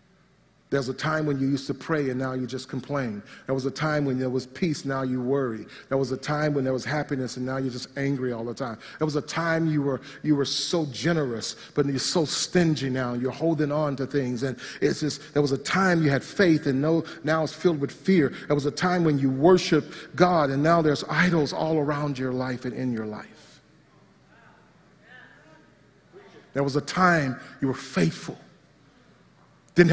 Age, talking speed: 40-59, 215 wpm